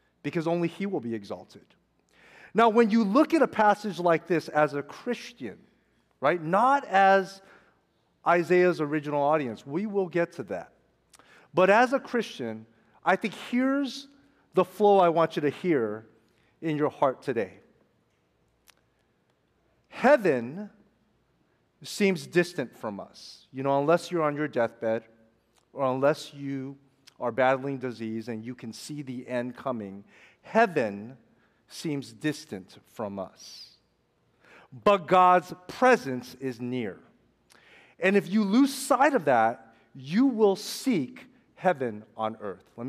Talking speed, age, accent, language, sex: 135 wpm, 40-59, American, English, male